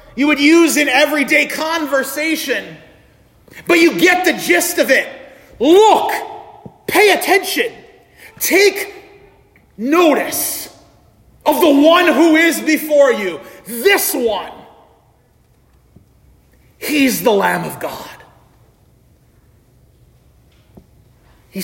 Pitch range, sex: 255-370 Hz, male